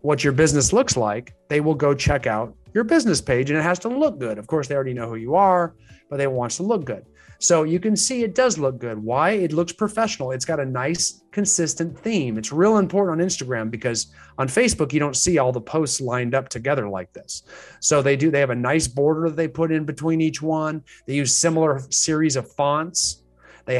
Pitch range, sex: 125-160 Hz, male